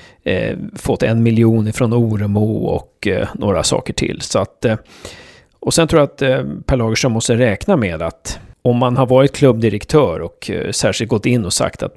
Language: Swedish